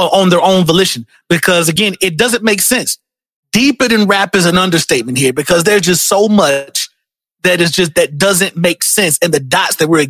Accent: American